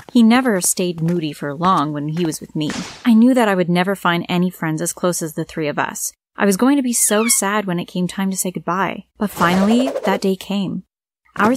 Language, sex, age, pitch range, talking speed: English, female, 20-39, 180-225 Hz, 245 wpm